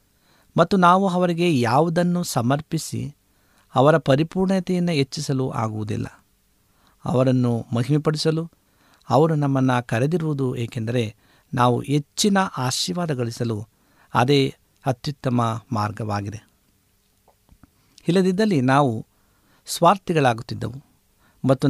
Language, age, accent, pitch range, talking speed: Kannada, 60-79, native, 110-145 Hz, 70 wpm